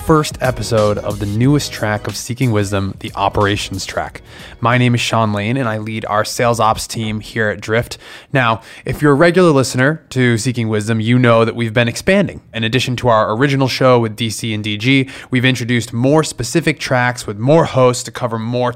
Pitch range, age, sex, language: 110-140 Hz, 20-39, male, English